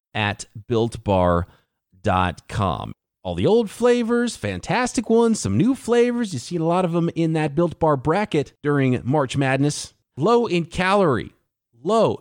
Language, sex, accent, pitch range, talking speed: English, male, American, 110-170 Hz, 145 wpm